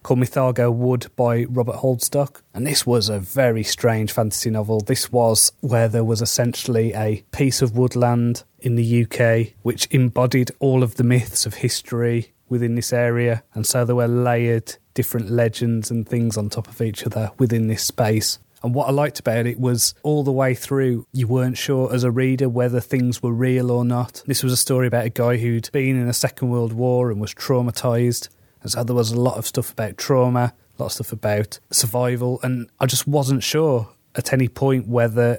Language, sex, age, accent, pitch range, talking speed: English, male, 30-49, British, 115-125 Hz, 200 wpm